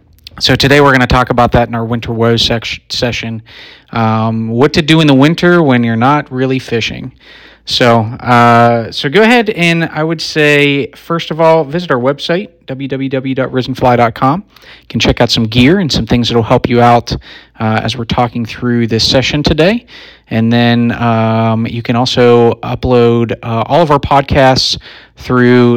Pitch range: 115-135 Hz